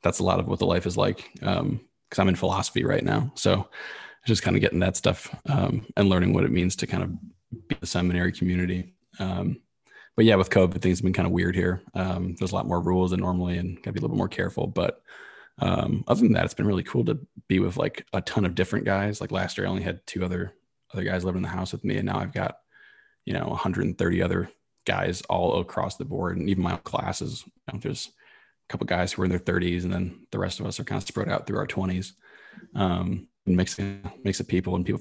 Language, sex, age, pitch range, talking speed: English, male, 20-39, 90-95 Hz, 255 wpm